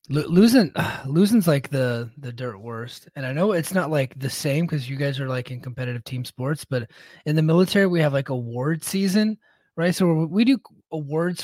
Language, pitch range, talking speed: English, 130-155 Hz, 205 wpm